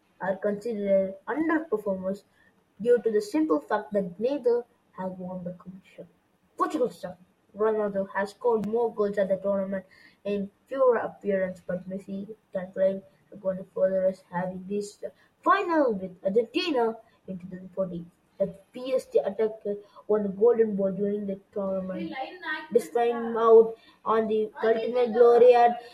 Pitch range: 195-235 Hz